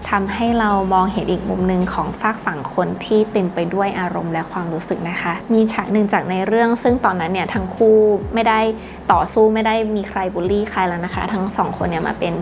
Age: 20-39